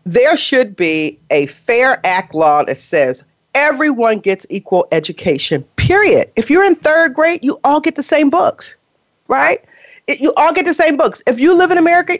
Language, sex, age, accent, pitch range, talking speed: English, female, 40-59, American, 195-315 Hz, 180 wpm